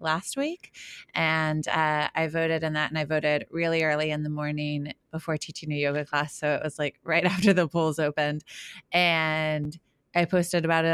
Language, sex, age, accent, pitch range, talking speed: English, female, 30-49, American, 155-185 Hz, 190 wpm